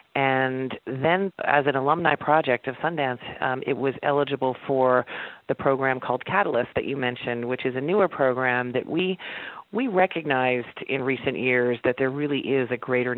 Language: English